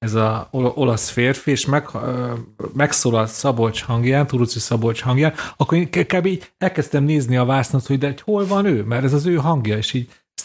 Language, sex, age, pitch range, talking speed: Hungarian, male, 30-49, 120-150 Hz, 210 wpm